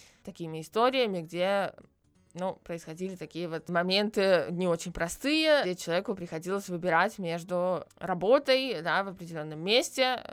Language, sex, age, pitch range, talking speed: Russian, female, 20-39, 170-220 Hz, 120 wpm